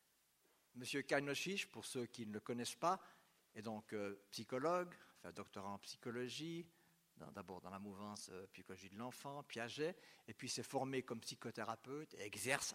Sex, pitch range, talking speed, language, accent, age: male, 115-150 Hz, 165 wpm, French, French, 50-69